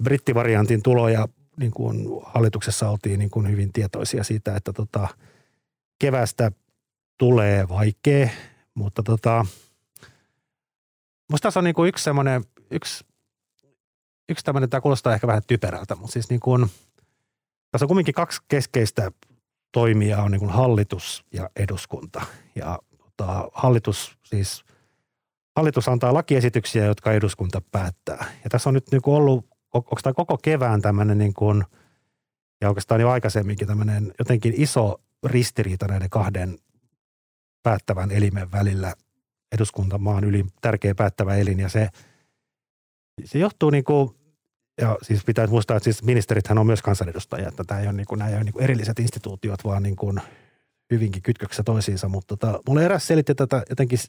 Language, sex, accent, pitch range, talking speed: Finnish, male, native, 105-130 Hz, 145 wpm